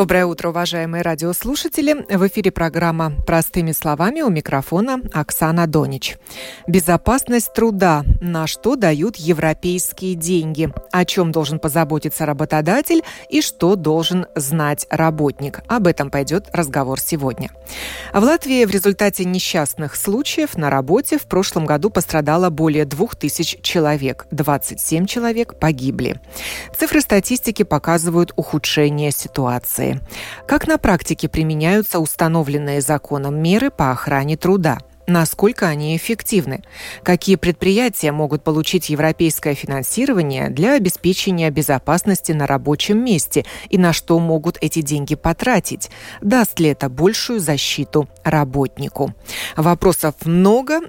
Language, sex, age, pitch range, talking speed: Russian, female, 30-49, 155-195 Hz, 115 wpm